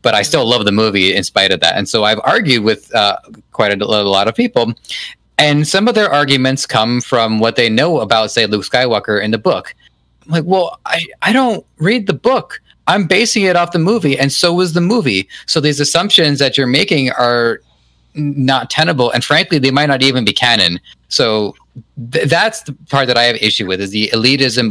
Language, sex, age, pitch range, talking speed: English, male, 30-49, 100-135 Hz, 215 wpm